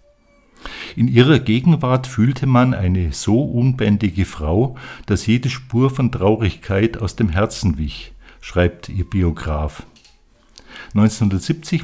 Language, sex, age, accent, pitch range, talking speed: German, male, 50-69, German, 90-120 Hz, 110 wpm